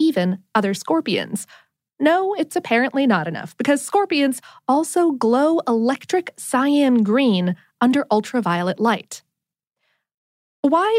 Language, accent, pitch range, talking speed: English, American, 205-295 Hz, 105 wpm